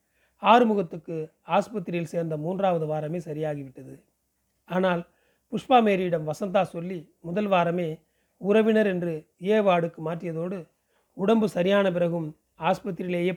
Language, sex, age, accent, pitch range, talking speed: Tamil, male, 40-59, native, 160-195 Hz, 95 wpm